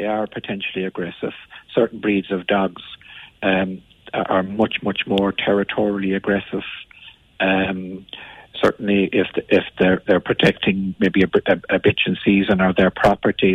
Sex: male